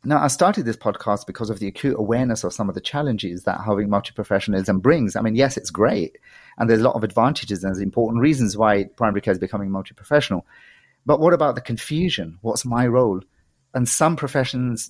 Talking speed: 200 wpm